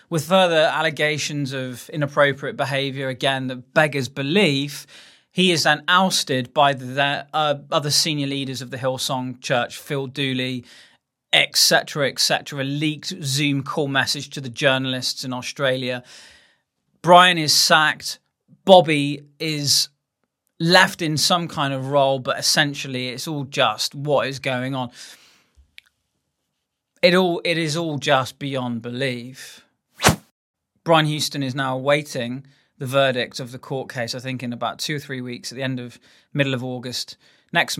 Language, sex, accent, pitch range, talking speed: English, male, British, 130-155 Hz, 150 wpm